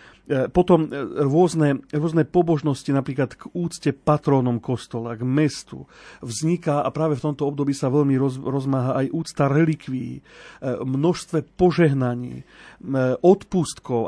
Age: 40-59